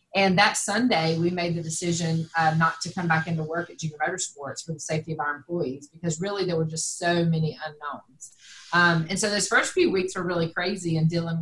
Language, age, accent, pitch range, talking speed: English, 30-49, American, 160-190 Hz, 225 wpm